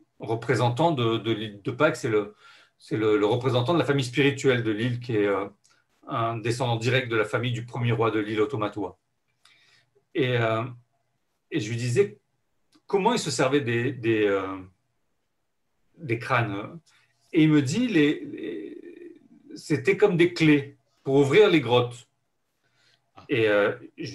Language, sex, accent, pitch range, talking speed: French, male, French, 115-150 Hz, 160 wpm